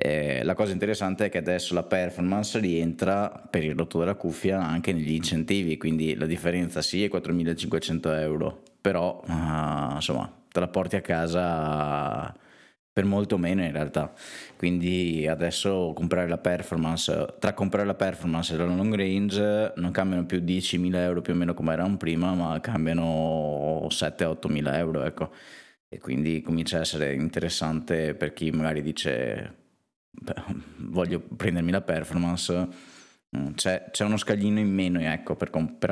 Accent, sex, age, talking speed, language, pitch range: native, male, 20-39, 150 wpm, Italian, 80-95 Hz